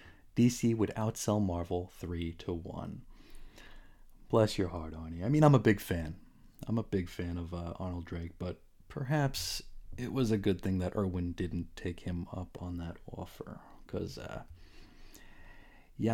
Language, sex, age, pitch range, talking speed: English, male, 30-49, 90-125 Hz, 165 wpm